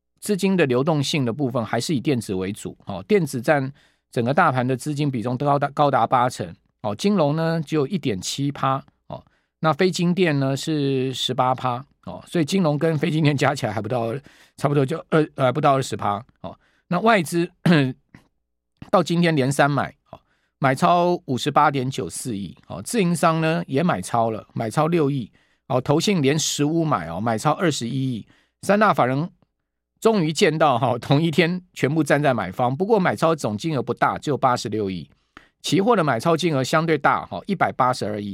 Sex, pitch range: male, 120-165 Hz